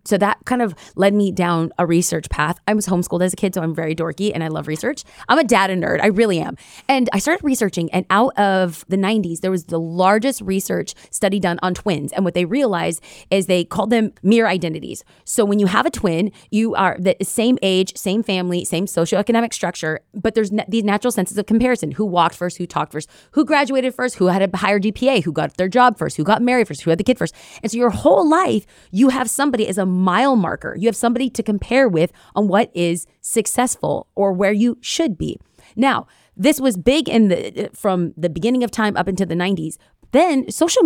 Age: 20-39